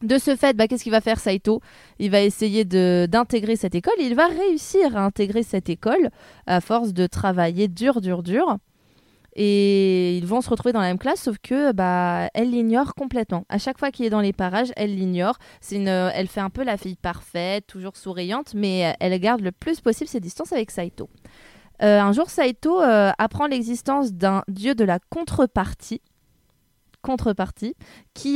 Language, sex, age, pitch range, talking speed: French, female, 20-39, 195-265 Hz, 190 wpm